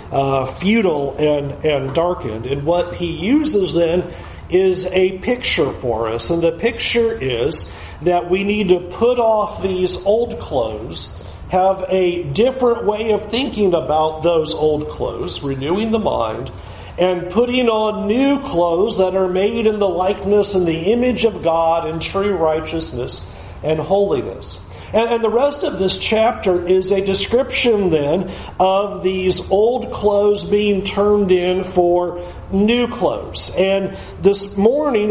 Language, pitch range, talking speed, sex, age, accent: English, 175-220 Hz, 145 wpm, male, 40-59, American